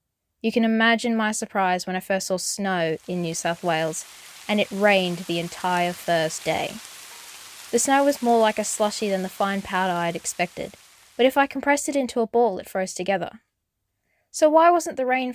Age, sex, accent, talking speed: 10-29, female, Australian, 200 wpm